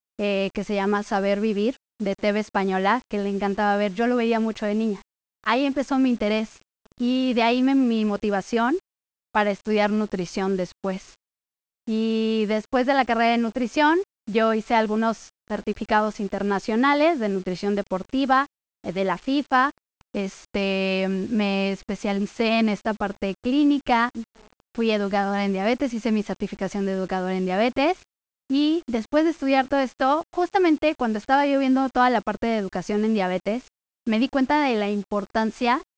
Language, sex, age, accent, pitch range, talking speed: Spanish, female, 20-39, Mexican, 205-250 Hz, 155 wpm